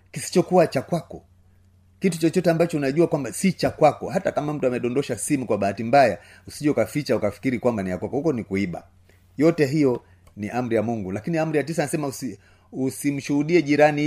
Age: 30-49